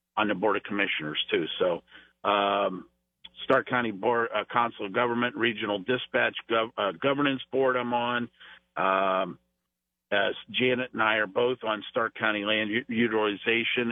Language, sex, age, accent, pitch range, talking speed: English, male, 50-69, American, 100-125 Hz, 140 wpm